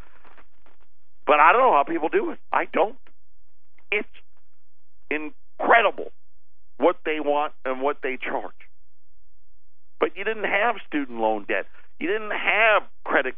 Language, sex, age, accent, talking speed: English, male, 50-69, American, 135 wpm